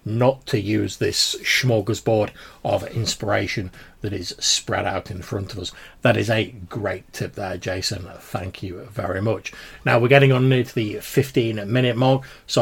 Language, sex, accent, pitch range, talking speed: English, male, British, 105-130 Hz, 180 wpm